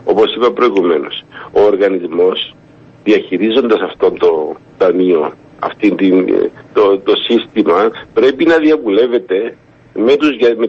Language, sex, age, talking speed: Greek, male, 50-69, 95 wpm